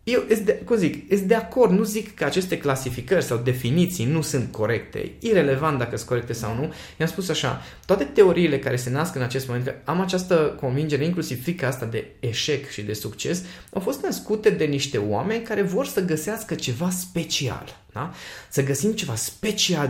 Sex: male